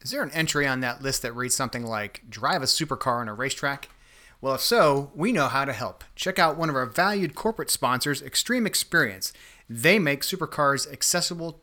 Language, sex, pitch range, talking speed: English, male, 120-150 Hz, 200 wpm